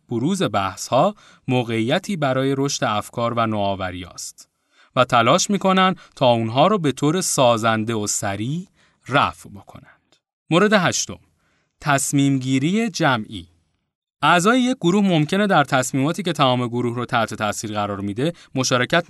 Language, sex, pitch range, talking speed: Persian, male, 105-160 Hz, 140 wpm